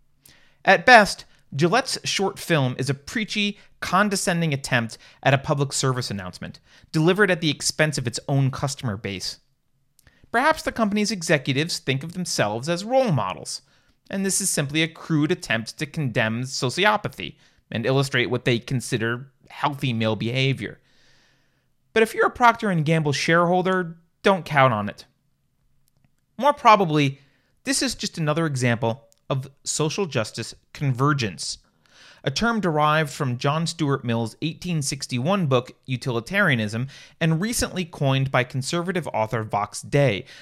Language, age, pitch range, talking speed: English, 30-49, 130-180 Hz, 135 wpm